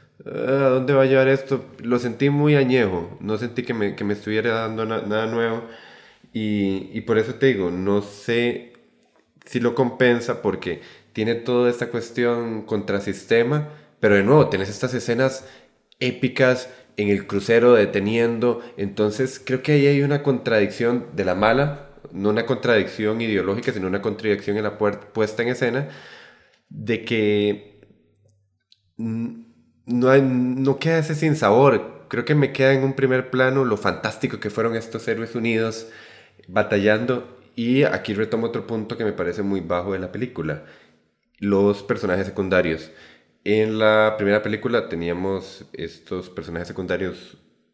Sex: male